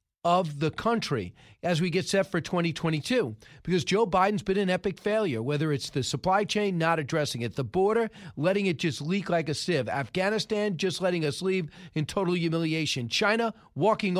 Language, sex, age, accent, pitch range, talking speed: English, male, 40-59, American, 155-215 Hz, 180 wpm